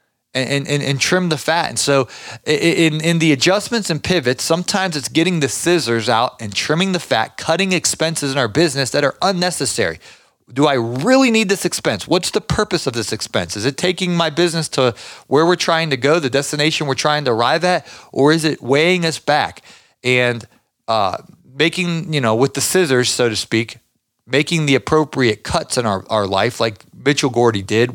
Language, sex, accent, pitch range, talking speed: English, male, American, 120-165 Hz, 195 wpm